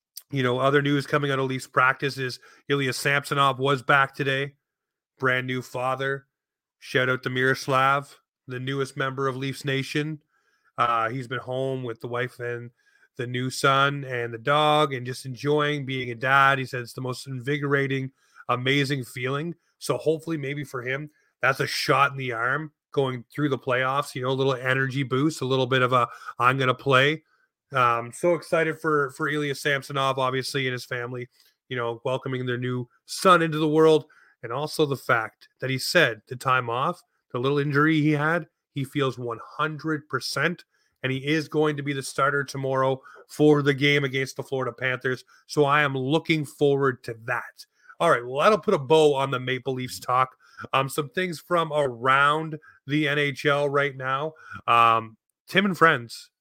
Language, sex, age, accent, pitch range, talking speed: English, male, 30-49, American, 130-145 Hz, 185 wpm